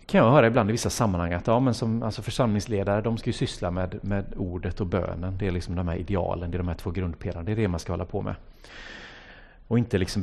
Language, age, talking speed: Swedish, 30-49, 265 wpm